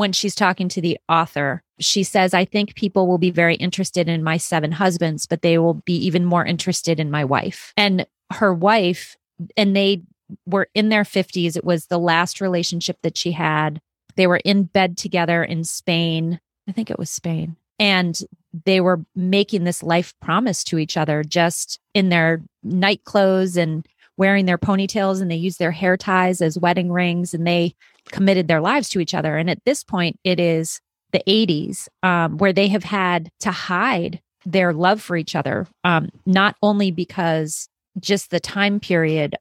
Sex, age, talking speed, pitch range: female, 30-49, 185 wpm, 165-195 Hz